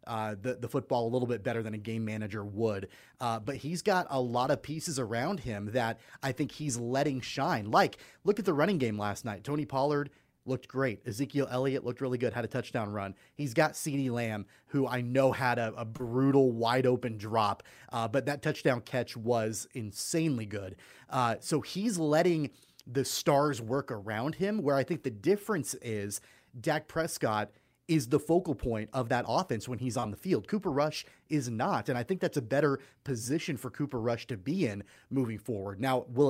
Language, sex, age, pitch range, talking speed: English, male, 30-49, 115-150 Hz, 200 wpm